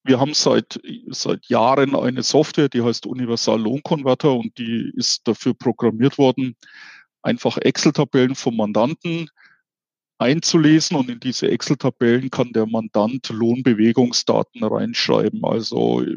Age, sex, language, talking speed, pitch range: 50-69, male, German, 120 wpm, 120-145 Hz